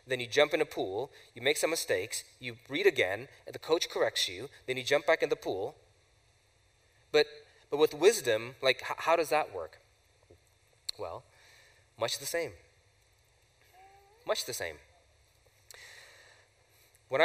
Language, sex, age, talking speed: English, male, 20-39, 150 wpm